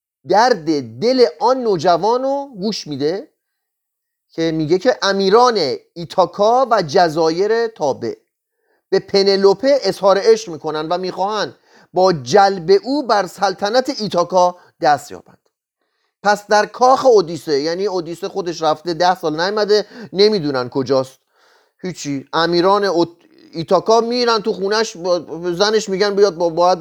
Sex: male